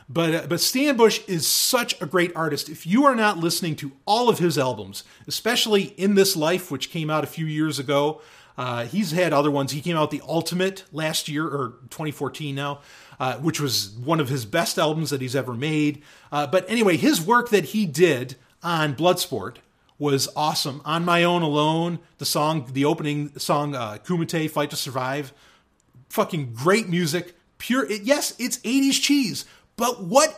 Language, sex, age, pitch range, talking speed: English, male, 30-49, 150-245 Hz, 190 wpm